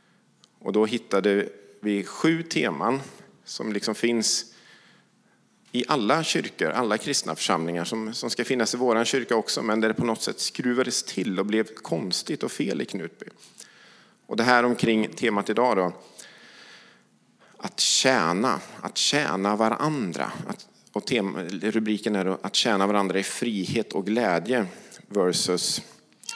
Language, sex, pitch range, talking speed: English, male, 100-120 Hz, 135 wpm